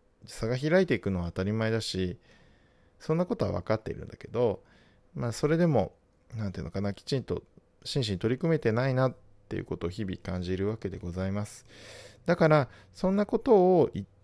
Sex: male